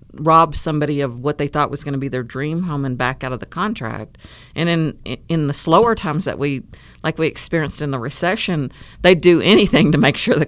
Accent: American